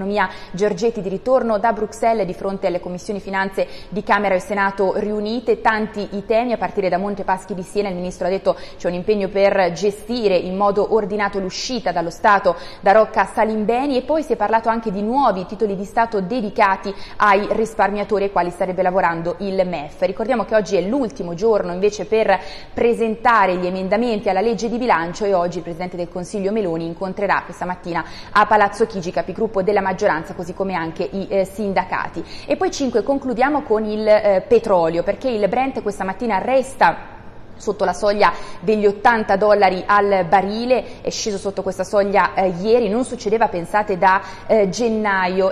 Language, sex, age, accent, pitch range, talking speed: Italian, female, 20-39, native, 185-225 Hz, 180 wpm